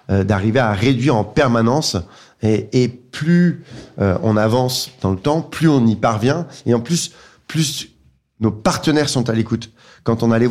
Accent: French